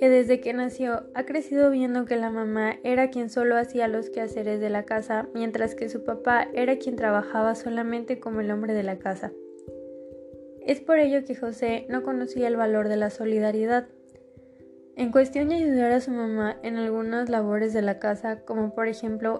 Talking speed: 190 wpm